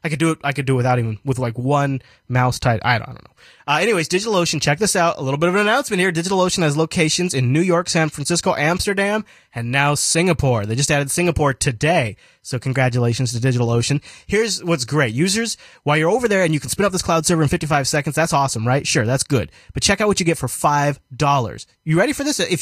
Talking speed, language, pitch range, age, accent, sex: 245 wpm, English, 130-175 Hz, 20-39, American, male